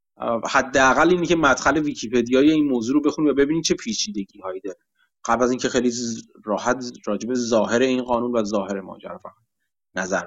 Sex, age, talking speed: male, 30-49, 170 wpm